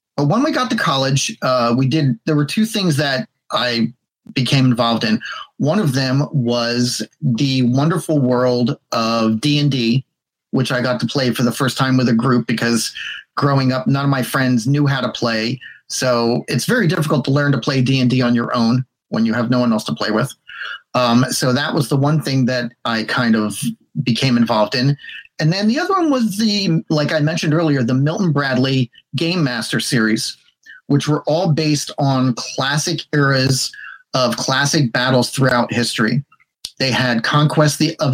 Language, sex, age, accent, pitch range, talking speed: English, male, 30-49, American, 120-145 Hz, 185 wpm